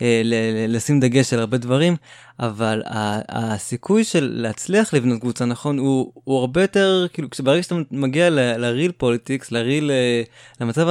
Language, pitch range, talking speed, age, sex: Hebrew, 115-155 Hz, 145 wpm, 20-39, male